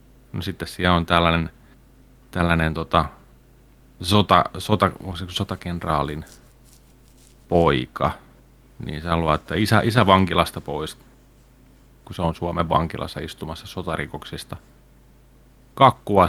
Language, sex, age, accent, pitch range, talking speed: Finnish, male, 30-49, native, 80-95 Hz, 90 wpm